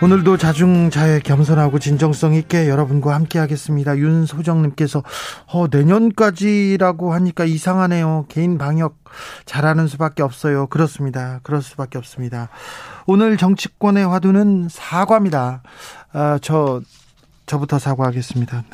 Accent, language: native, Korean